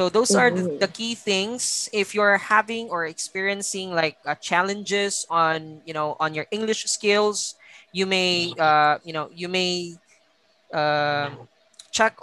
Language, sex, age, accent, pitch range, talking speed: English, female, 20-39, Filipino, 165-200 Hz, 145 wpm